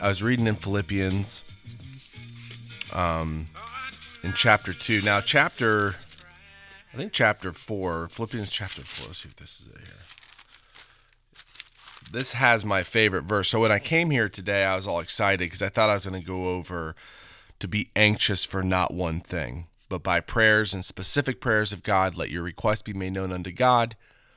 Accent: American